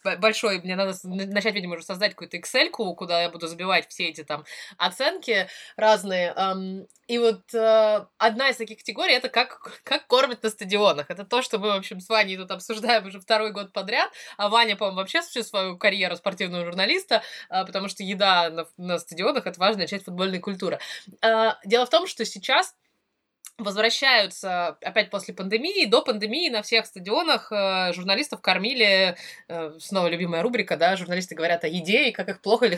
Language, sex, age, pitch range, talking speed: Russian, female, 20-39, 180-225 Hz, 180 wpm